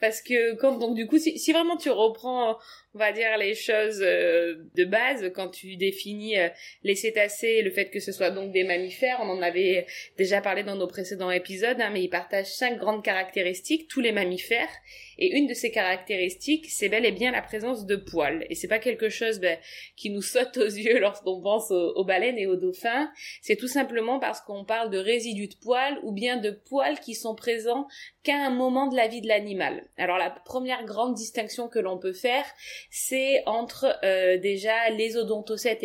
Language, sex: French, female